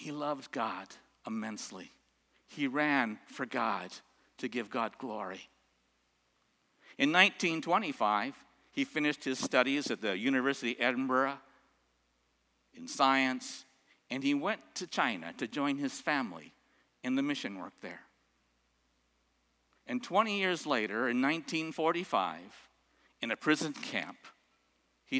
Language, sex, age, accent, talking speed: English, male, 60-79, American, 120 wpm